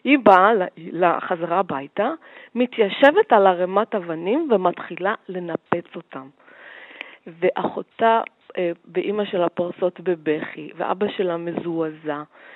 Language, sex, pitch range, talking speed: Hebrew, female, 180-245 Hz, 95 wpm